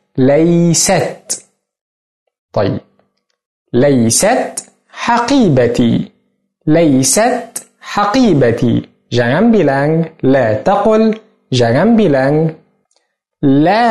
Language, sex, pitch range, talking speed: Arabic, male, 135-215 Hz, 55 wpm